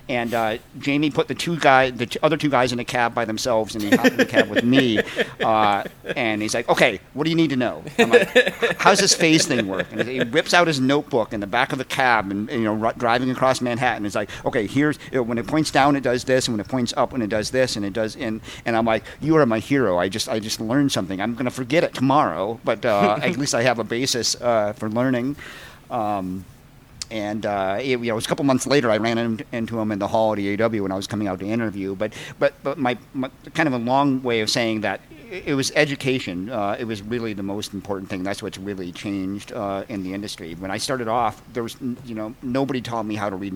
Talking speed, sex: 265 wpm, male